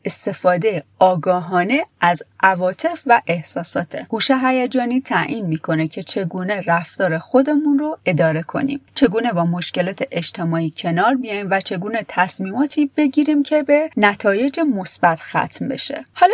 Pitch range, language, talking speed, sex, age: 175-255 Hz, Persian, 125 wpm, female, 30-49